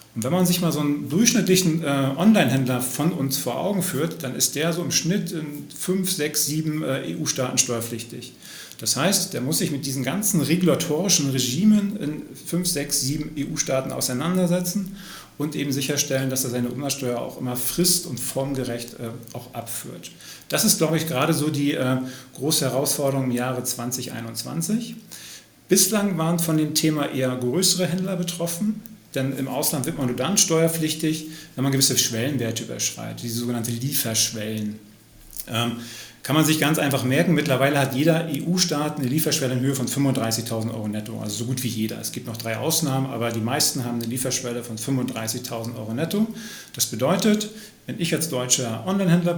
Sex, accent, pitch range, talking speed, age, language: male, German, 125-165 Hz, 175 wpm, 40-59, German